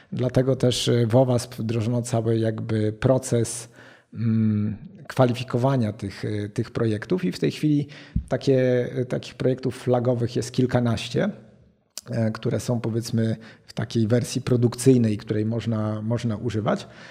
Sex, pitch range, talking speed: male, 110-130 Hz, 110 wpm